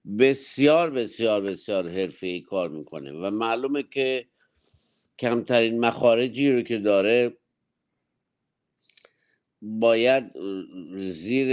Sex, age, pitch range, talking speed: male, 50-69, 105-125 Hz, 85 wpm